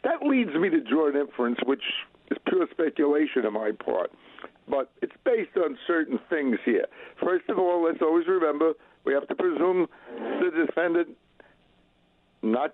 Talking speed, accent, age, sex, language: 155 wpm, American, 60-79, male, English